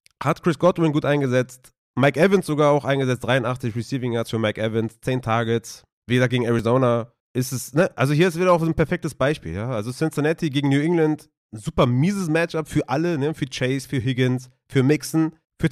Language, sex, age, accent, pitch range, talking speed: German, male, 30-49, German, 115-150 Hz, 200 wpm